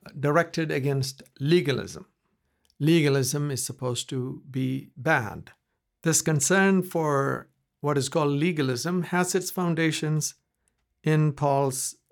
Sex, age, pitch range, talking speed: male, 60-79, 135-175 Hz, 105 wpm